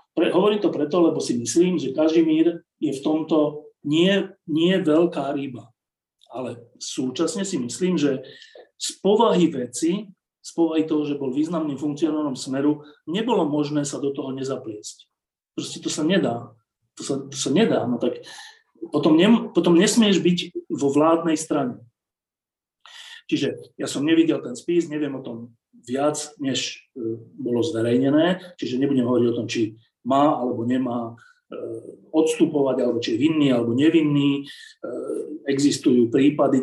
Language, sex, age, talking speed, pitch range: Slovak, male, 40-59, 145 wpm, 135-175 Hz